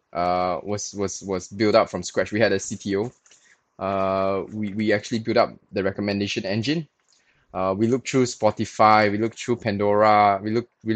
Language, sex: English, male